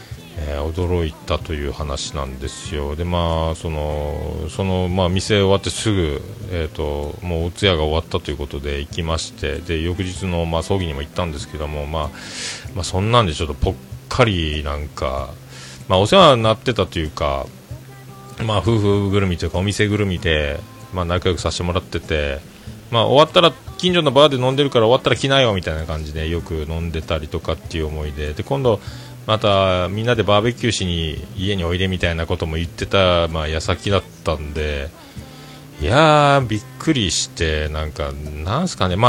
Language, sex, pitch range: Japanese, male, 80-120 Hz